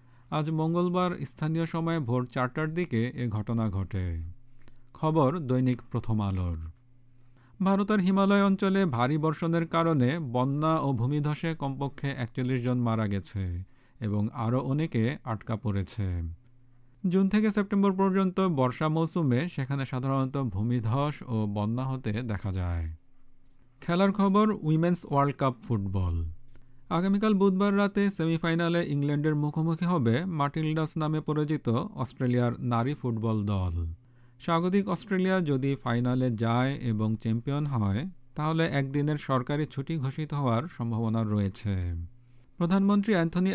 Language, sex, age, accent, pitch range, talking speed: Bengali, male, 50-69, native, 120-165 Hz, 100 wpm